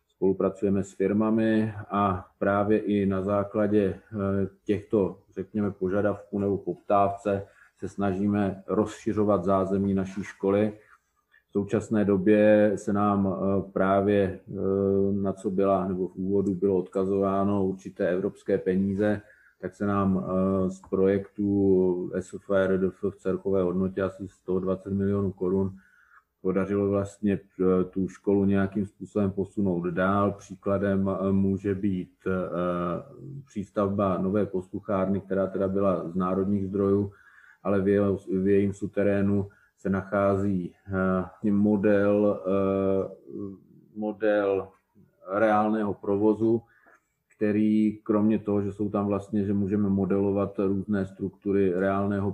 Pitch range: 95-100 Hz